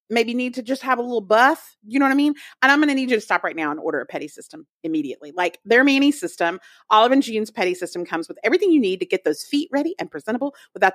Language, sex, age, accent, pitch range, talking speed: English, female, 40-59, American, 190-295 Hz, 280 wpm